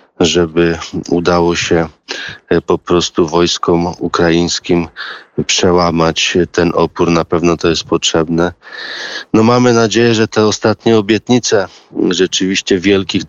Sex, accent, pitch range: male, native, 85-95 Hz